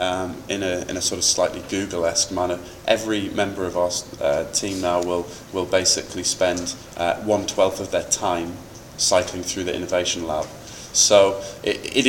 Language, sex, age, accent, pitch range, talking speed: English, male, 20-39, British, 90-110 Hz, 175 wpm